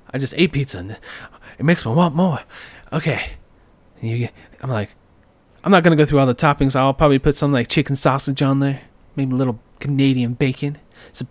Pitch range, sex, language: 110-145 Hz, male, English